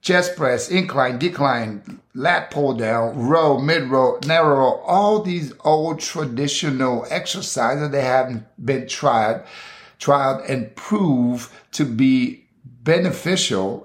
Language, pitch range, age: English, 105-135 Hz, 50-69